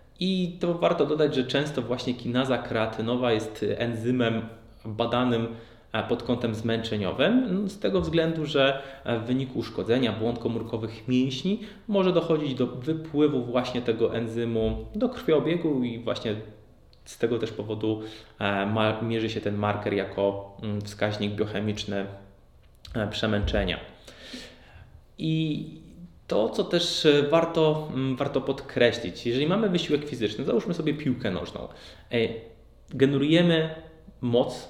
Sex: male